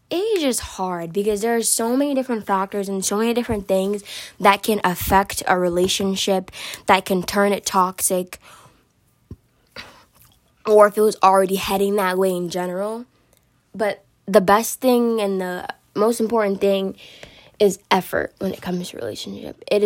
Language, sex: English, female